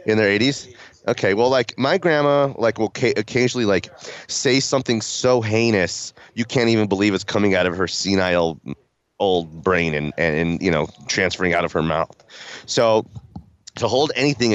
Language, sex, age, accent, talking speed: English, male, 30-49, American, 170 wpm